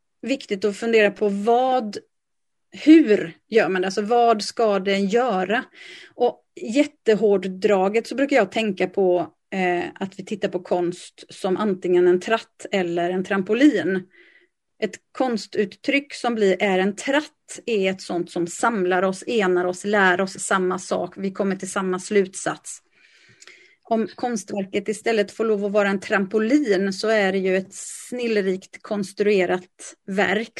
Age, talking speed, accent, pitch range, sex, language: 30-49, 145 wpm, native, 190-230 Hz, female, Swedish